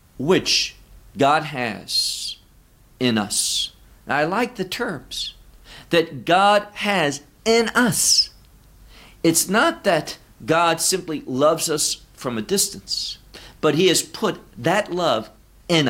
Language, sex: English, male